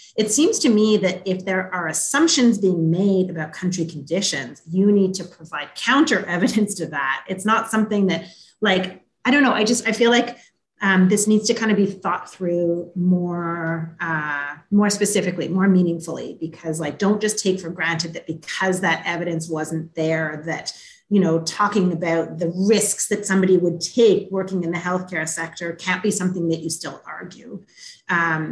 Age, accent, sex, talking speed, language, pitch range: 30-49, American, female, 185 wpm, English, 165-205 Hz